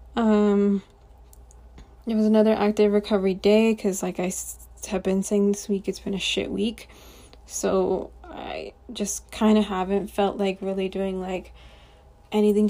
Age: 20-39